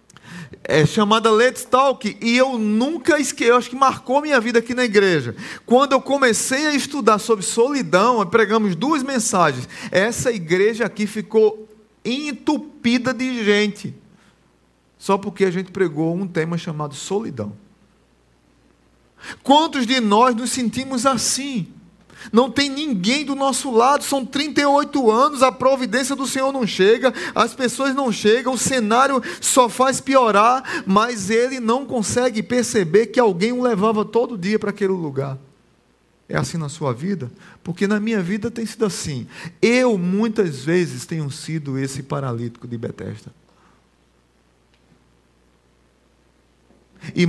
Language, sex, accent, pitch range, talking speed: Portuguese, male, Brazilian, 160-255 Hz, 140 wpm